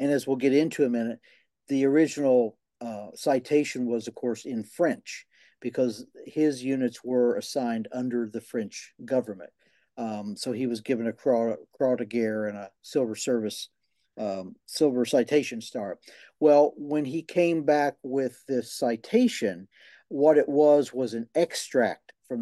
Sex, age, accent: male, 50-69, American